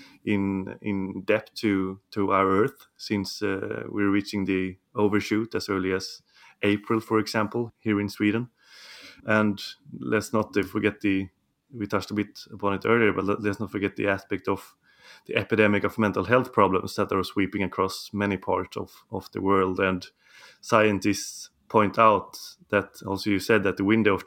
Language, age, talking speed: English, 30-49, 170 wpm